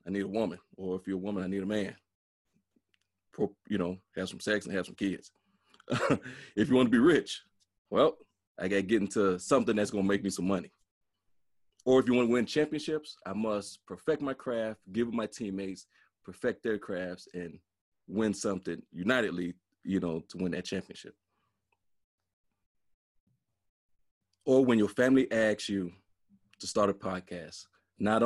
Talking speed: 175 wpm